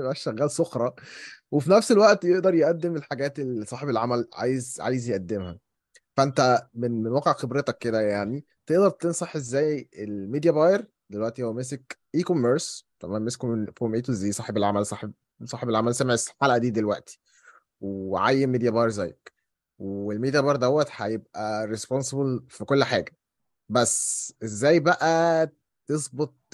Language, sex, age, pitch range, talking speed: Arabic, male, 20-39, 115-155 Hz, 140 wpm